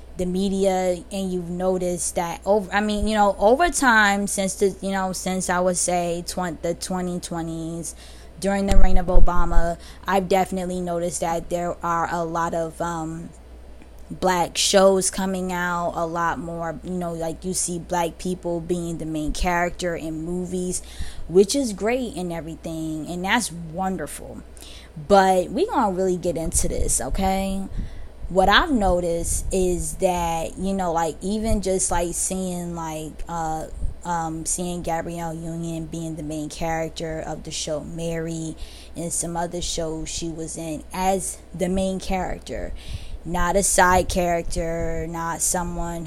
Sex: female